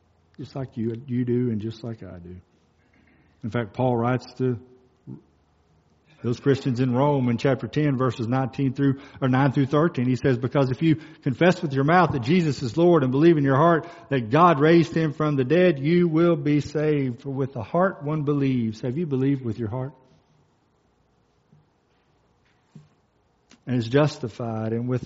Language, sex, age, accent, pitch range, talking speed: English, male, 50-69, American, 120-155 Hz, 180 wpm